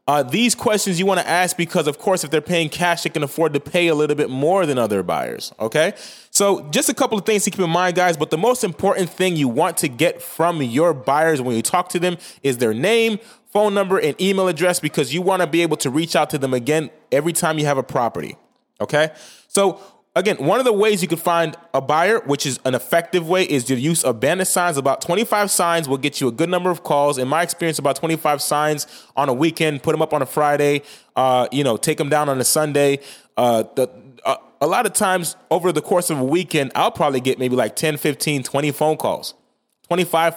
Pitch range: 140-180 Hz